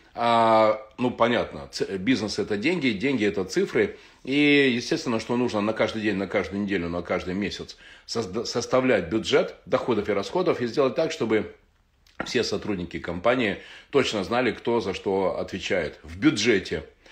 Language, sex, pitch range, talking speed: Russian, male, 105-125 Hz, 145 wpm